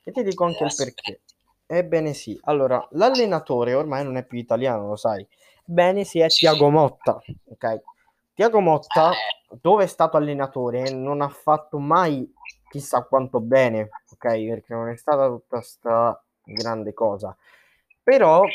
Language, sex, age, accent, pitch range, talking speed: Italian, male, 20-39, native, 120-160 Hz, 150 wpm